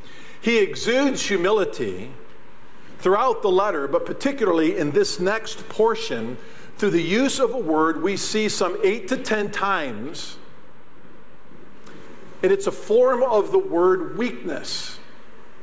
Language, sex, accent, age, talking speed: English, male, American, 50-69, 125 wpm